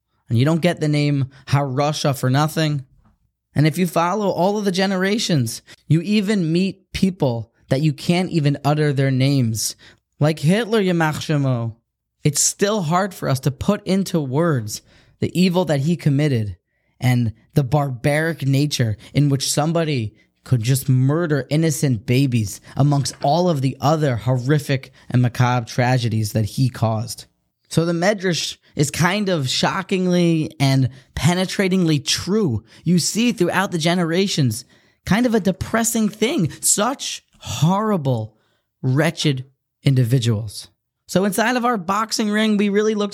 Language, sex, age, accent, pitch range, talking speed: English, male, 10-29, American, 130-185 Hz, 140 wpm